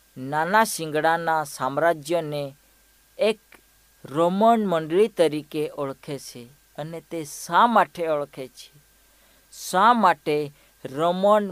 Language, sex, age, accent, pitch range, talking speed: Hindi, female, 50-69, native, 145-195 Hz, 50 wpm